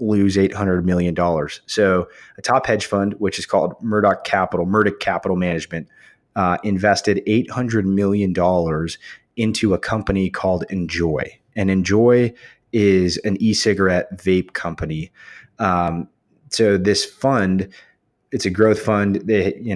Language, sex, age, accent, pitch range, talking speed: English, male, 30-49, American, 90-105 Hz, 135 wpm